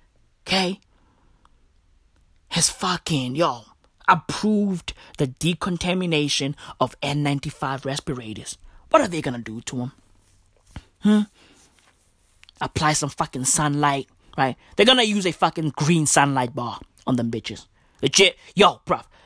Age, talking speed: 20-39, 115 wpm